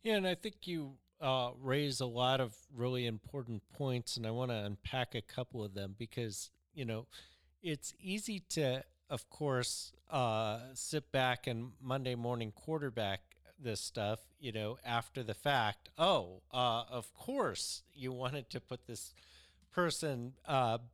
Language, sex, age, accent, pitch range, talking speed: English, male, 40-59, American, 115-150 Hz, 160 wpm